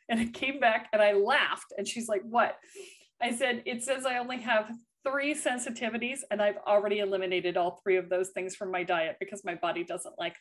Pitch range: 185-270 Hz